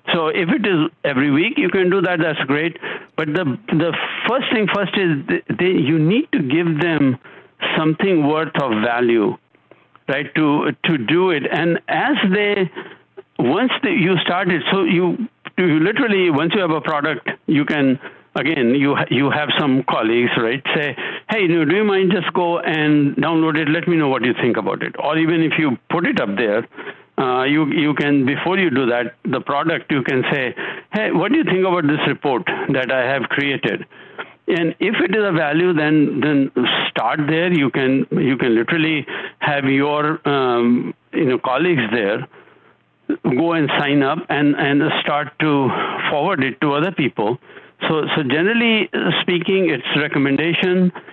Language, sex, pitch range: English, male, 140-180 Hz